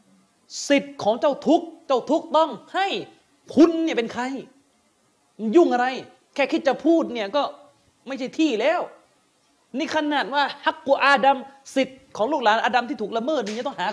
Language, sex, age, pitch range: Thai, male, 30-49, 245-320 Hz